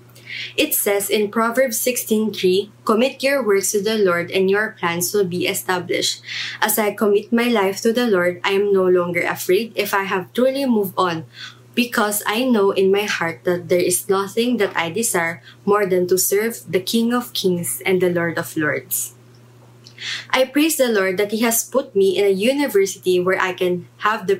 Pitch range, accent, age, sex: 180-220 Hz, Filipino, 20-39, female